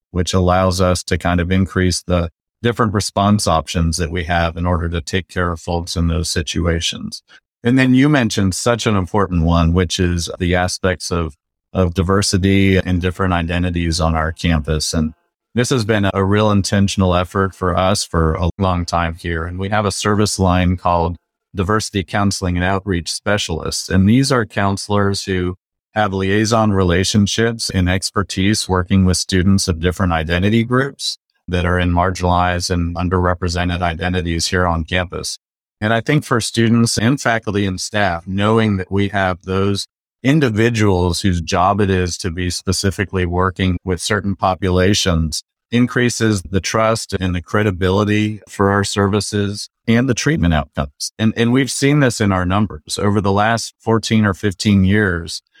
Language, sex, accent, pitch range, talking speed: English, male, American, 90-105 Hz, 165 wpm